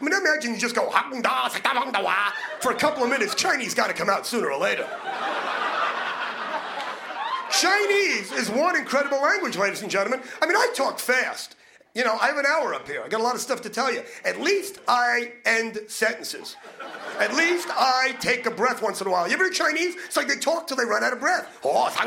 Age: 30-49